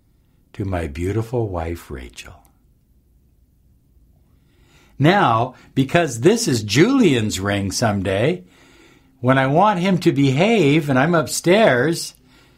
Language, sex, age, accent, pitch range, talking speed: English, male, 60-79, American, 115-160 Hz, 100 wpm